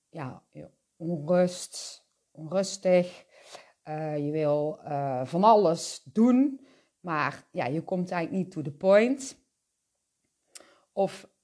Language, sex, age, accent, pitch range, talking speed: Dutch, female, 40-59, Dutch, 160-230 Hz, 100 wpm